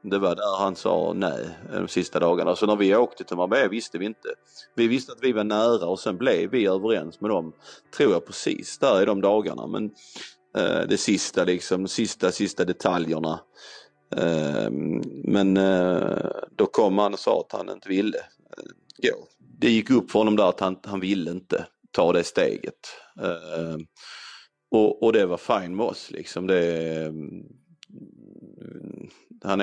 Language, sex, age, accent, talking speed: Swedish, male, 30-49, native, 180 wpm